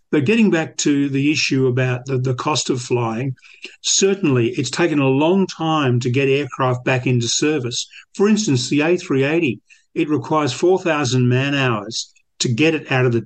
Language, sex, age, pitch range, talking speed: English, male, 50-69, 125-155 Hz, 175 wpm